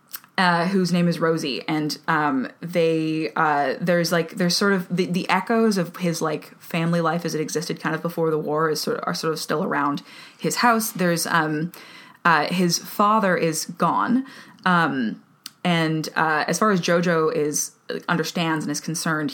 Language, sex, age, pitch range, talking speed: English, female, 20-39, 155-185 Hz, 185 wpm